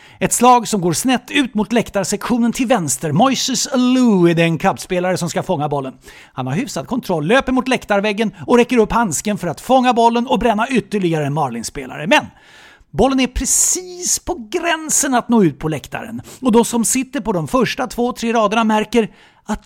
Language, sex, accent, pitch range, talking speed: English, male, Swedish, 180-265 Hz, 185 wpm